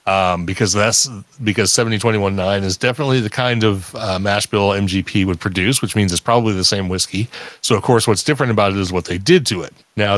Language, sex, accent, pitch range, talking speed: English, male, American, 105-145 Hz, 220 wpm